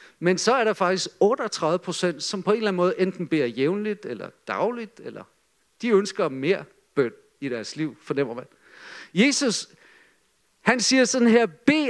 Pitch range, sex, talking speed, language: 185-255 Hz, male, 165 wpm, Danish